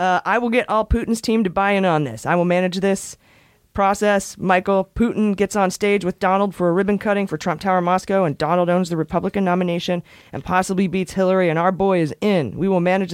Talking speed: 230 wpm